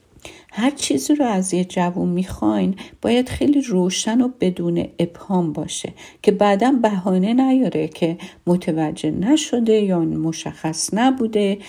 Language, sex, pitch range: Persian, female, 165-205 Hz